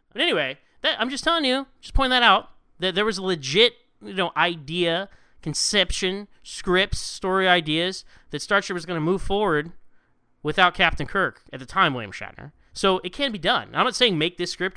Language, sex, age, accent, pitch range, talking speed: English, male, 20-39, American, 140-205 Hz, 200 wpm